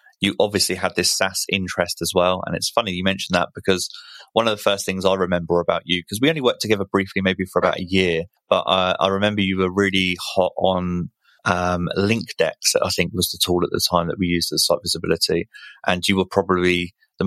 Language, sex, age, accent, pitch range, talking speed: English, male, 20-39, British, 90-100 Hz, 225 wpm